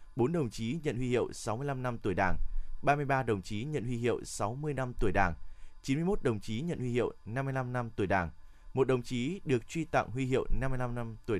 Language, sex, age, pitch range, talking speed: Vietnamese, male, 20-39, 100-130 Hz, 215 wpm